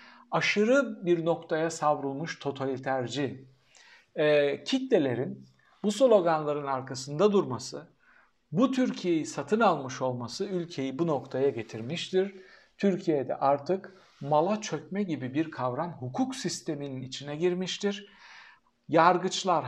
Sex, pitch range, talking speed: male, 140-190 Hz, 100 wpm